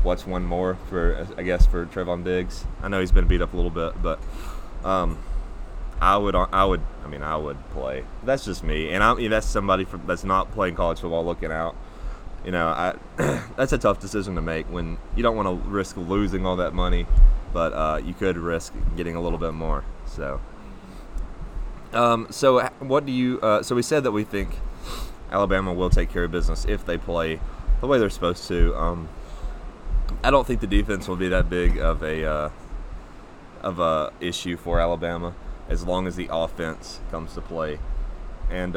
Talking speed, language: 195 wpm, English